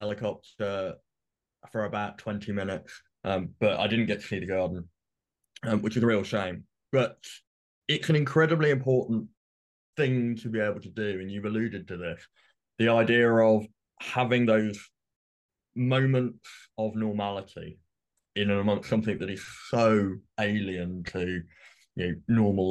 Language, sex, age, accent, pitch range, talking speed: English, male, 20-39, British, 95-110 Hz, 150 wpm